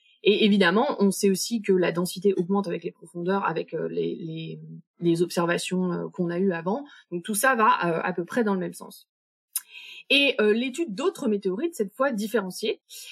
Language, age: French, 20-39